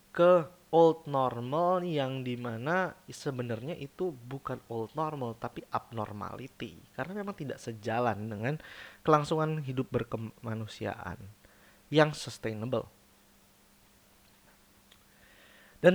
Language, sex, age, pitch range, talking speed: Indonesian, male, 20-39, 110-155 Hz, 85 wpm